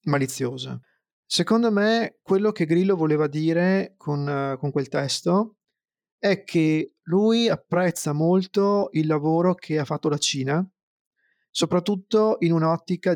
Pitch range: 150-190 Hz